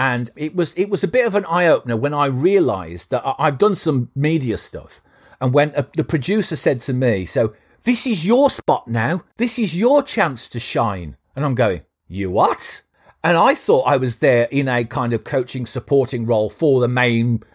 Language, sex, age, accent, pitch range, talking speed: English, male, 50-69, British, 110-175 Hz, 210 wpm